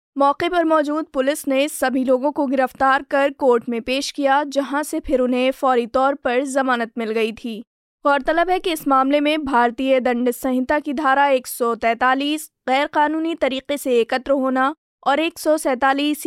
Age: 20-39